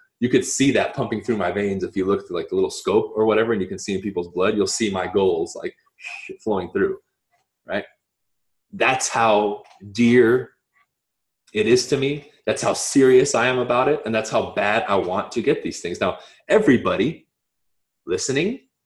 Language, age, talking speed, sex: English, 20-39, 190 wpm, male